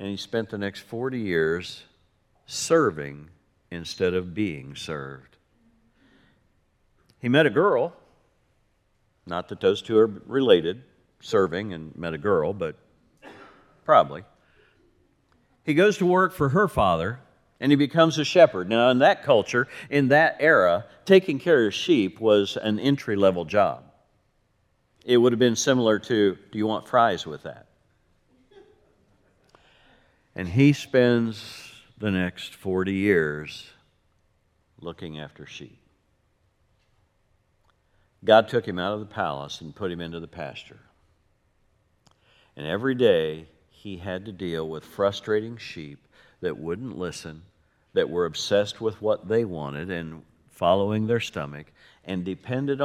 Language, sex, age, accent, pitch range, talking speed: English, male, 50-69, American, 90-115 Hz, 135 wpm